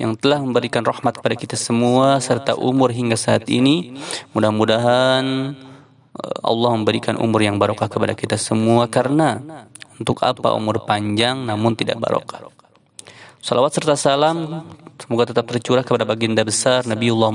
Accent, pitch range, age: native, 110-135 Hz, 20-39